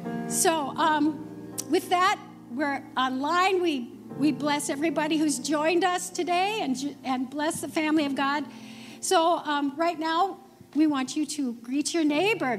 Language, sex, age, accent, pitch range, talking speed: English, female, 60-79, American, 285-370 Hz, 155 wpm